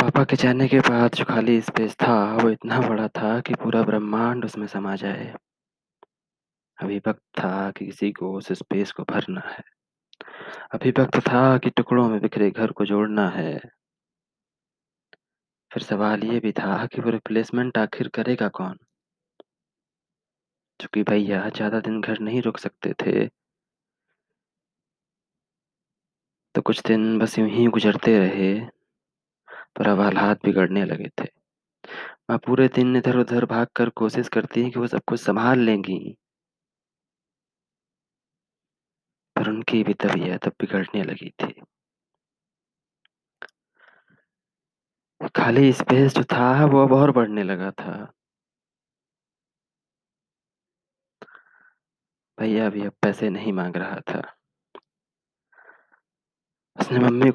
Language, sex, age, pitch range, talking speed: Hindi, male, 20-39, 105-125 Hz, 120 wpm